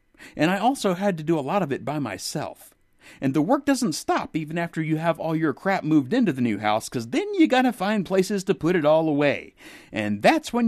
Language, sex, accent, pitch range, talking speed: English, male, American, 135-200 Hz, 245 wpm